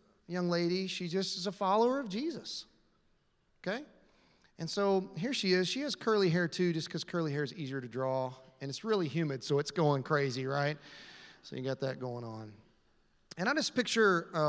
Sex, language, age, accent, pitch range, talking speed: male, English, 30-49, American, 145-195 Hz, 195 wpm